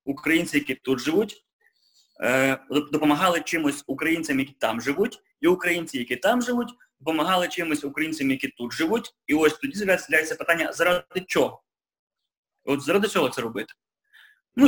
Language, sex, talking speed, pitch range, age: Ukrainian, male, 140 wpm, 140-225 Hz, 20-39